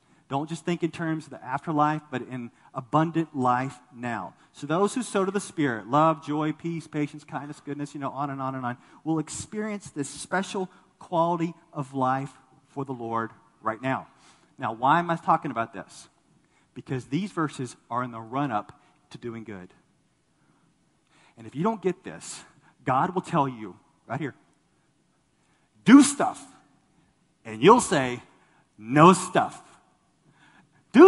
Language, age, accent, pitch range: English, 40-59, American, 130-185 Hz